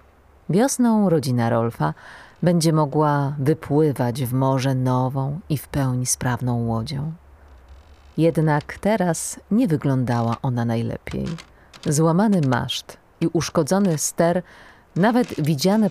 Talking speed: 100 wpm